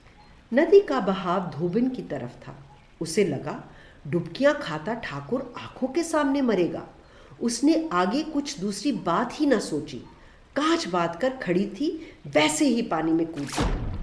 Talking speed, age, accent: 145 wpm, 50-69, native